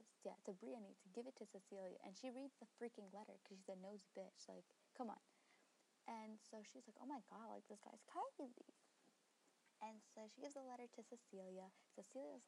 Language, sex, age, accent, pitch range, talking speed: English, female, 20-39, American, 200-255 Hz, 195 wpm